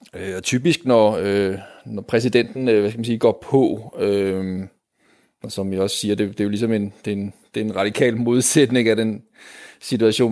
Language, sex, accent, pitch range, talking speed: Danish, male, native, 95-115 Hz, 215 wpm